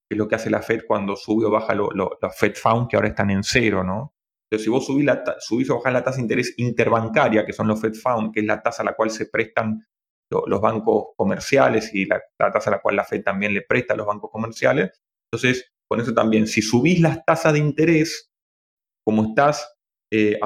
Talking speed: 240 wpm